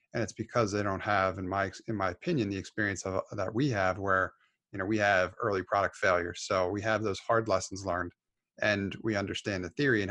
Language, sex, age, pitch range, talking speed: English, male, 30-49, 95-110 Hz, 220 wpm